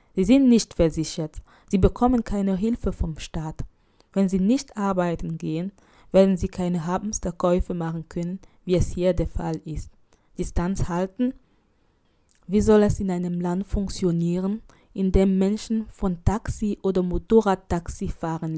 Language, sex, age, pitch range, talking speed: German, female, 20-39, 170-205 Hz, 140 wpm